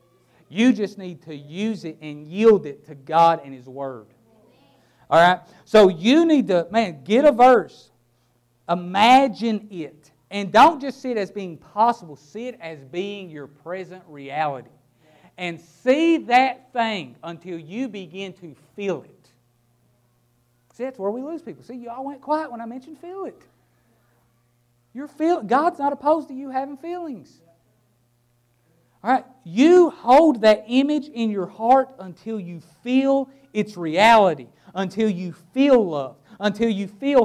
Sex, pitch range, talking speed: male, 145-235 Hz, 150 wpm